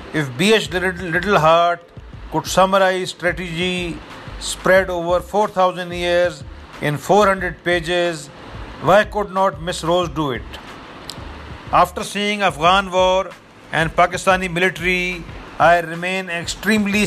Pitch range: 165-190 Hz